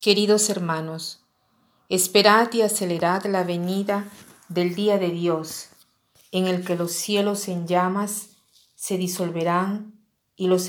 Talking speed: 125 wpm